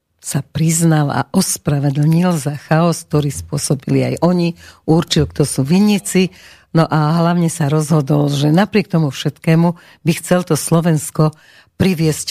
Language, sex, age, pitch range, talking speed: Slovak, female, 50-69, 150-170 Hz, 135 wpm